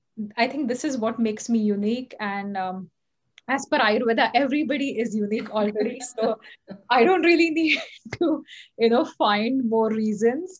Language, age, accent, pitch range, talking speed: English, 20-39, Indian, 210-235 Hz, 160 wpm